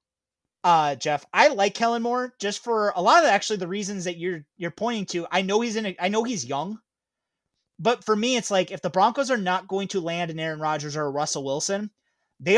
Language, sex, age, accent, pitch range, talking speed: English, male, 30-49, American, 160-210 Hz, 230 wpm